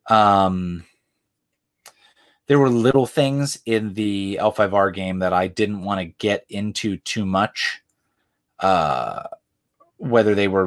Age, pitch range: 30-49, 95-120 Hz